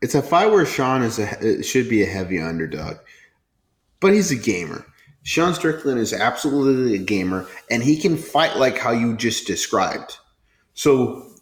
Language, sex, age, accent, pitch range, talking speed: English, male, 30-49, American, 105-155 Hz, 160 wpm